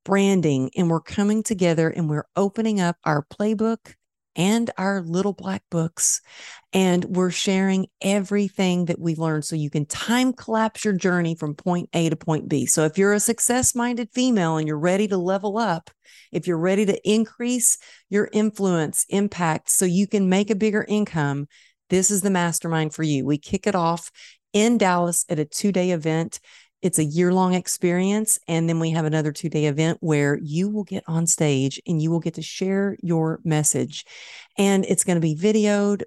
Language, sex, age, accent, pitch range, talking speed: English, female, 50-69, American, 160-200 Hz, 185 wpm